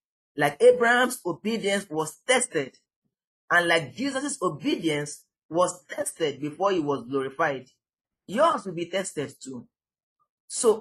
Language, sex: English, male